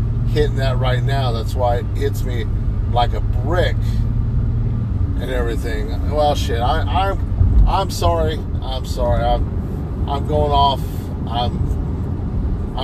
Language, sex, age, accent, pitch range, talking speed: English, male, 40-59, American, 85-100 Hz, 125 wpm